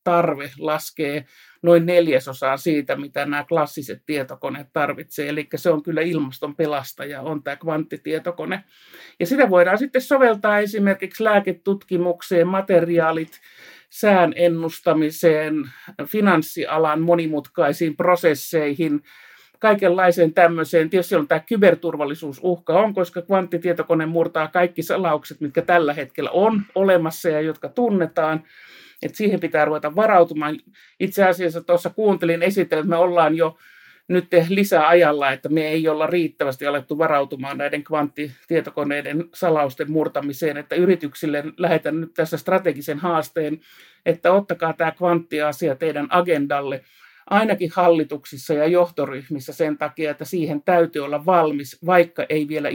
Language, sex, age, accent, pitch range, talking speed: Finnish, male, 50-69, native, 150-175 Hz, 120 wpm